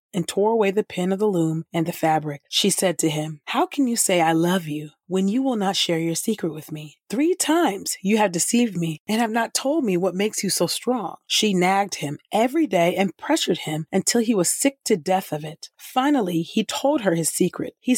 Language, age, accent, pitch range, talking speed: English, 30-49, American, 165-210 Hz, 235 wpm